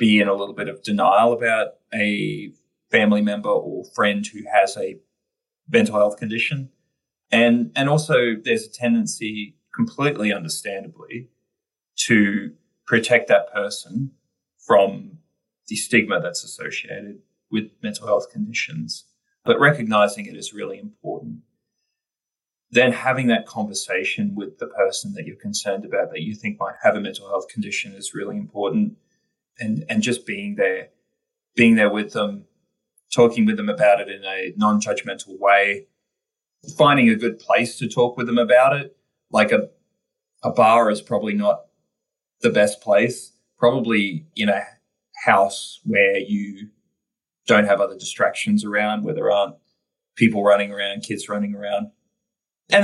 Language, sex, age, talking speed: English, male, 30-49, 145 wpm